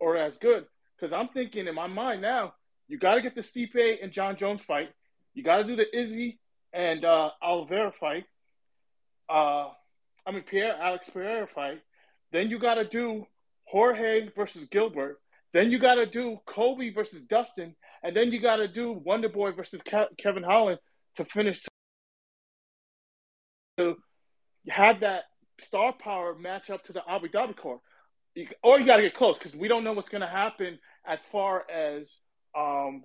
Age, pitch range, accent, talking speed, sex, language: 20-39, 180-225 Hz, American, 170 wpm, male, English